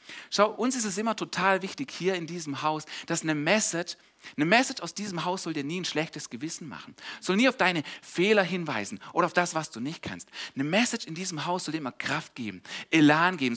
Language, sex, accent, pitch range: German, male, German, 135-180 Hz